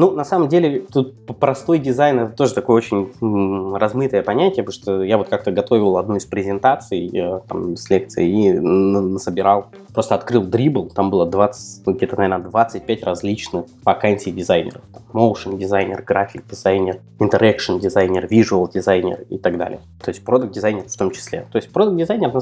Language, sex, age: Russian, male, 20-39